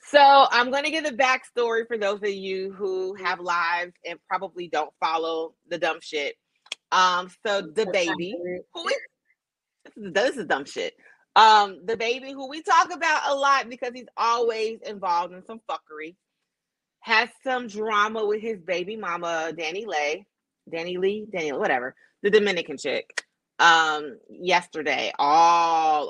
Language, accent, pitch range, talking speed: English, American, 175-250 Hz, 160 wpm